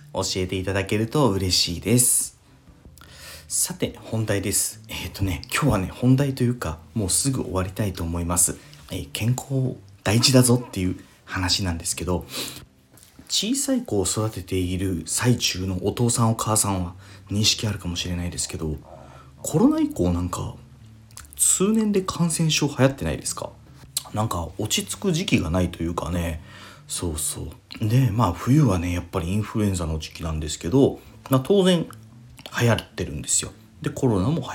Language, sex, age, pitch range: Japanese, male, 40-59, 90-125 Hz